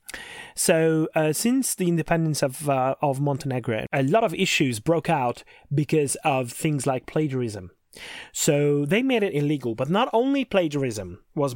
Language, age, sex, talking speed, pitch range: English, 30-49, male, 150 wpm, 130-165 Hz